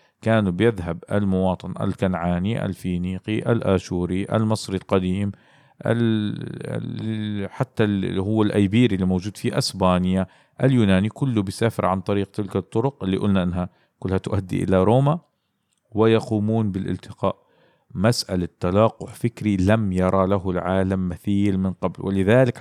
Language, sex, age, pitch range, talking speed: Arabic, male, 50-69, 95-115 Hz, 115 wpm